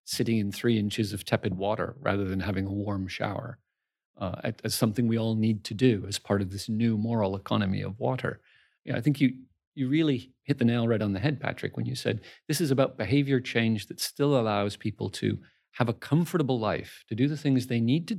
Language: English